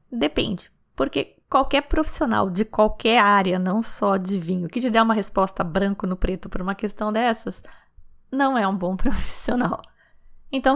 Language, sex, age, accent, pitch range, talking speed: Portuguese, female, 20-39, Brazilian, 205-265 Hz, 160 wpm